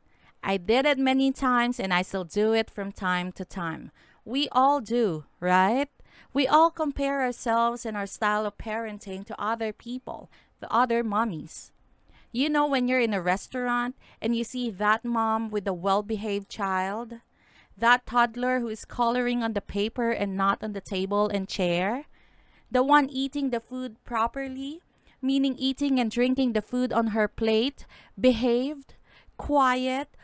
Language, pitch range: English, 220-255 Hz